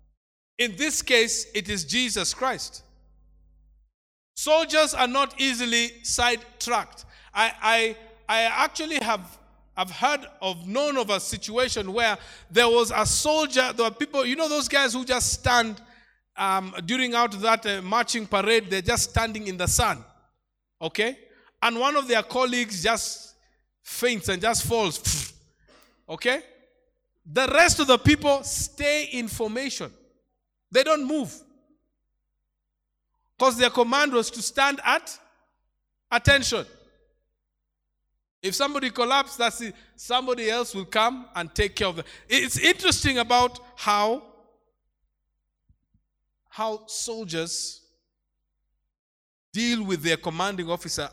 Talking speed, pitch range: 125 wpm, 190-255 Hz